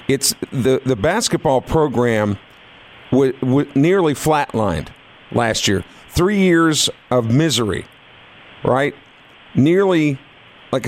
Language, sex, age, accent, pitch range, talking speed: English, male, 50-69, American, 125-155 Hz, 95 wpm